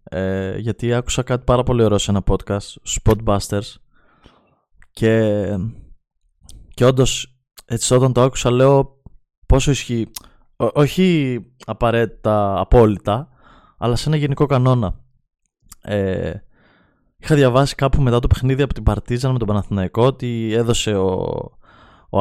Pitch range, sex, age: 105-130 Hz, male, 20-39